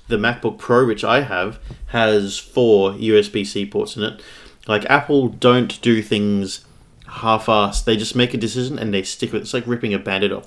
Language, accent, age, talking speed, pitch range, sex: English, Australian, 30-49, 200 wpm, 105-130 Hz, male